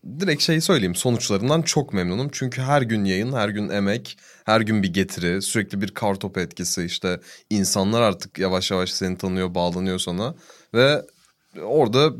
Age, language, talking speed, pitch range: 30-49, Turkish, 155 wpm, 95-140 Hz